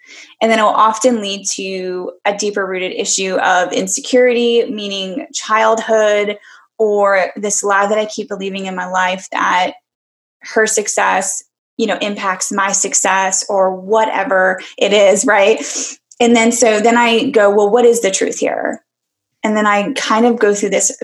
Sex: female